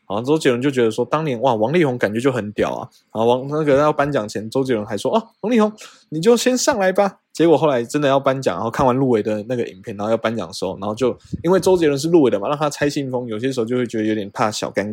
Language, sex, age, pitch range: Chinese, male, 20-39, 115-155 Hz